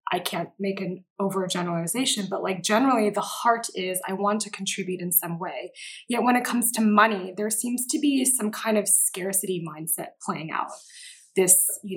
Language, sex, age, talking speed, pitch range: English, female, 20-39, 185 wpm, 190-230 Hz